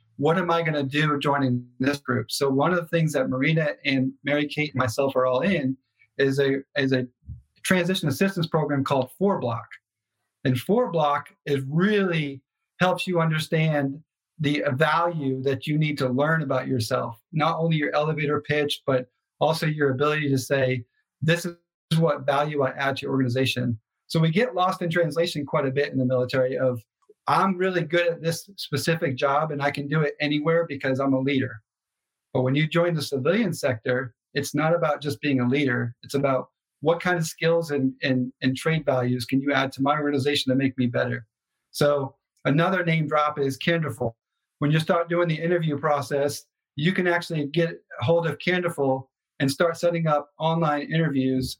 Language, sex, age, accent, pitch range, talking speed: English, male, 40-59, American, 130-165 Hz, 185 wpm